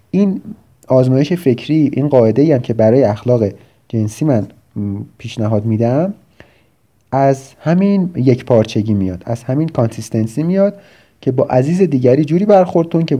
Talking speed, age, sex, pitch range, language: 135 wpm, 30-49, male, 110-145 Hz, Persian